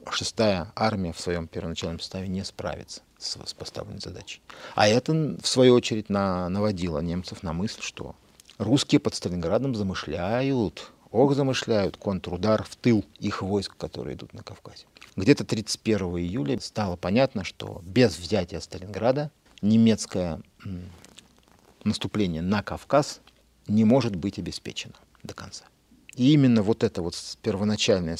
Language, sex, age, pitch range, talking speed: Russian, male, 40-59, 90-115 Hz, 135 wpm